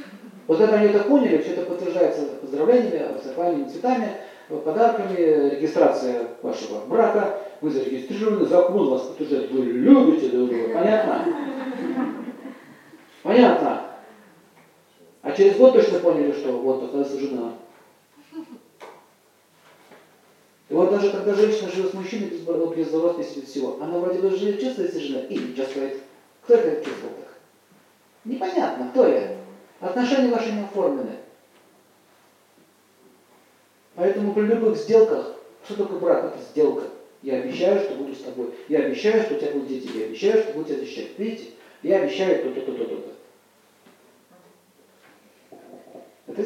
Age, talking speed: 40-59, 130 wpm